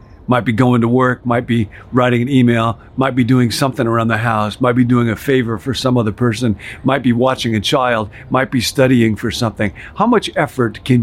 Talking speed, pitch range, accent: 220 wpm, 105-135 Hz, American